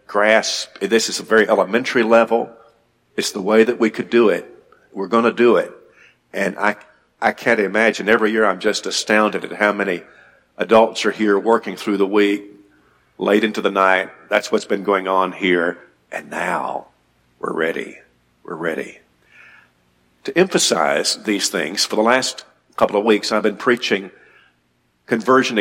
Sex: male